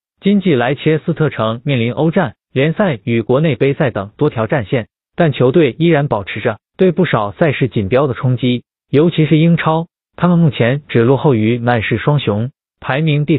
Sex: male